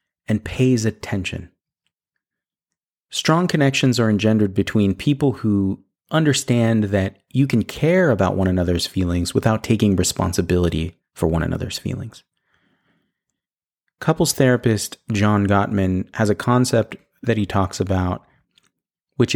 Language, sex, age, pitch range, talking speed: English, male, 30-49, 95-125 Hz, 120 wpm